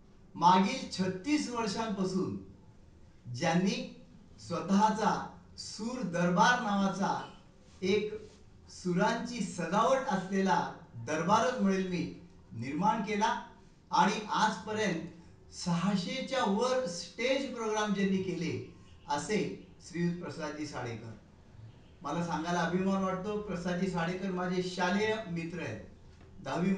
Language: Marathi